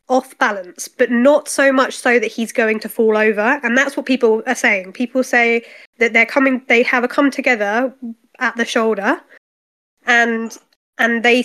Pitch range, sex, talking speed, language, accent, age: 230-275 Hz, female, 185 wpm, English, British, 20-39